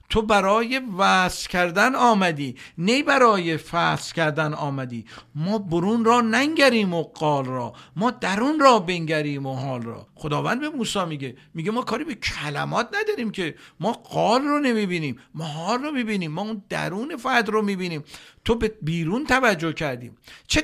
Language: Persian